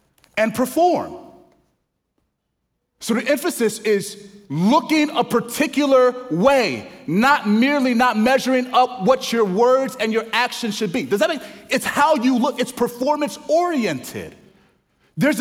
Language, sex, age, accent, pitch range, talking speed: English, male, 30-49, American, 205-270 Hz, 130 wpm